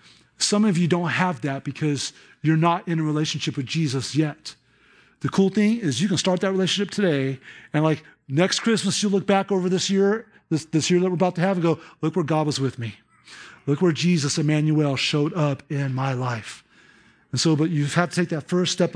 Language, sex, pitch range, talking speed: English, male, 145-195 Hz, 220 wpm